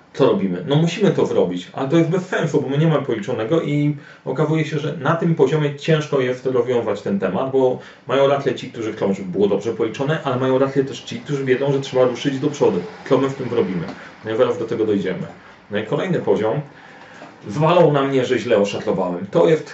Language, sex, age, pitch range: Polish, male, 40-59, 120-145 Hz